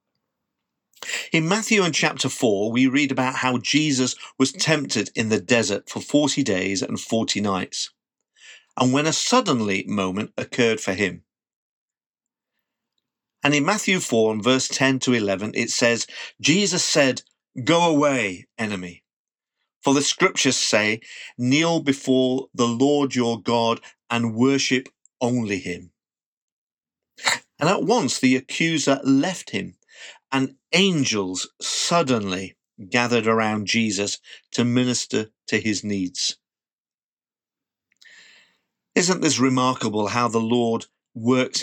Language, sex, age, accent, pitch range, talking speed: English, male, 50-69, British, 110-140 Hz, 120 wpm